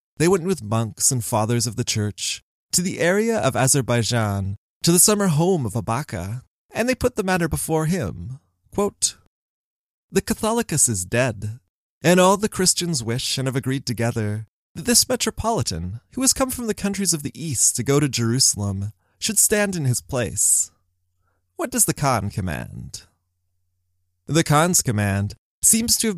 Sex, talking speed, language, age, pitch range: male, 165 wpm, English, 20-39, 110-175 Hz